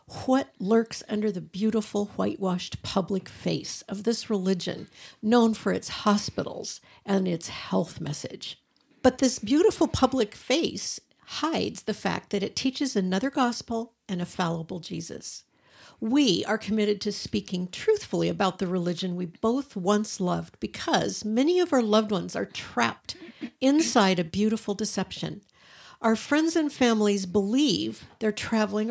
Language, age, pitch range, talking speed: English, 50-69, 195-255 Hz, 140 wpm